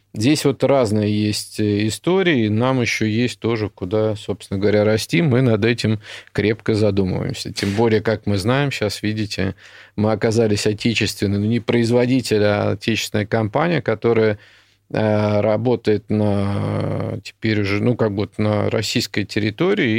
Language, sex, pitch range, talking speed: Russian, male, 105-115 Hz, 140 wpm